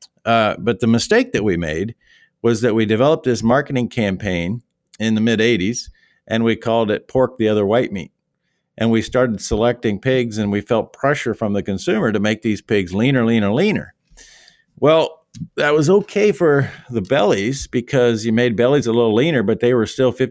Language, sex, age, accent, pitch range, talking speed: English, male, 50-69, American, 105-130 Hz, 185 wpm